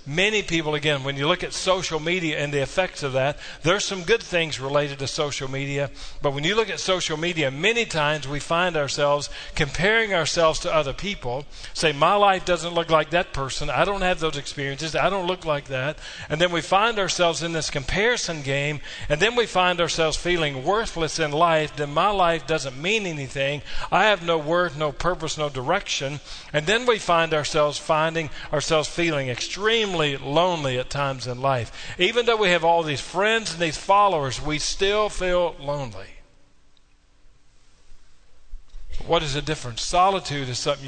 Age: 40-59